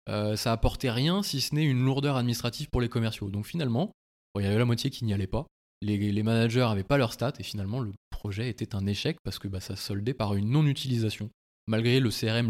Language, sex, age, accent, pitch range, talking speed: French, male, 20-39, French, 105-125 Hz, 240 wpm